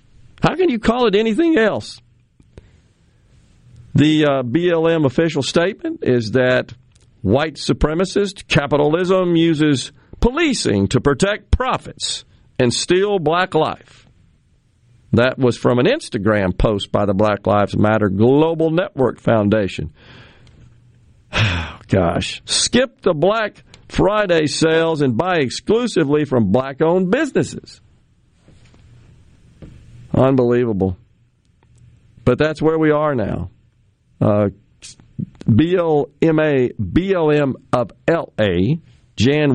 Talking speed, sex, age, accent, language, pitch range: 95 wpm, male, 50-69, American, English, 115-155 Hz